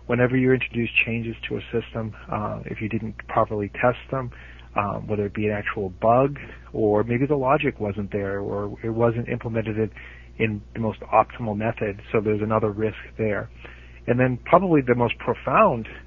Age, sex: 40-59, male